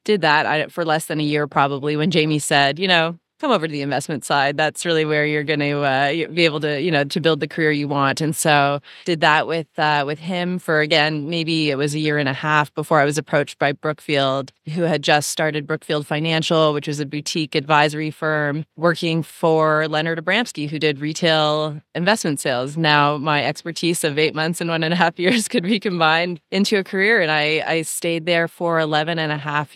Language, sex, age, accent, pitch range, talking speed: English, female, 20-39, American, 145-165 Hz, 220 wpm